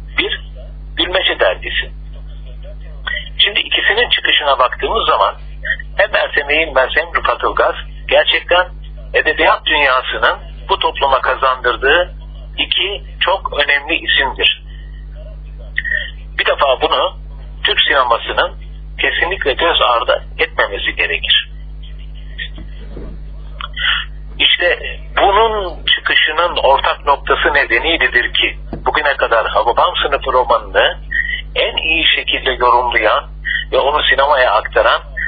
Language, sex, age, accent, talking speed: Turkish, male, 60-79, native, 90 wpm